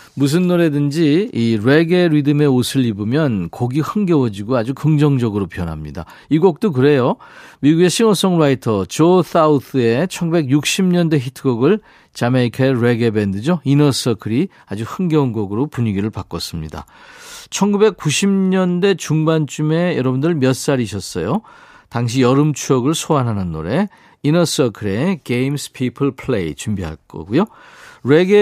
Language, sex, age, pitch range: Korean, male, 40-59, 115-165 Hz